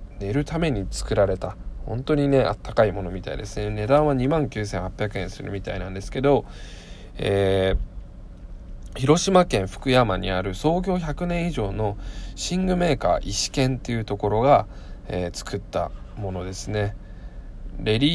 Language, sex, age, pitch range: Japanese, male, 20-39, 95-140 Hz